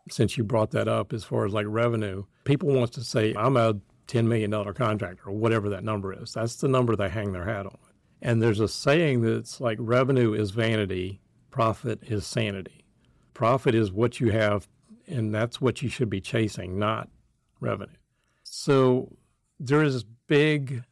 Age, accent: 60-79, American